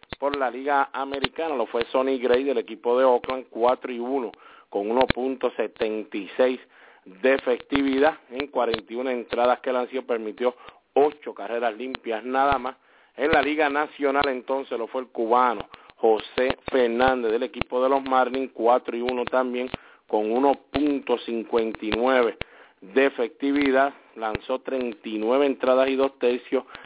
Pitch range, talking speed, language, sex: 115-135 Hz, 135 wpm, English, male